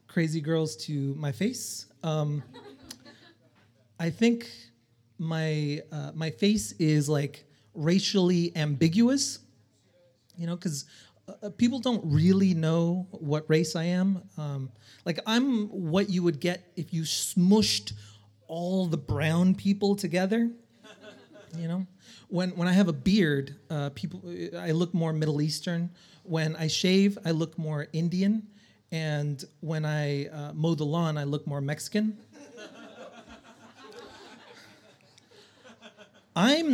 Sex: male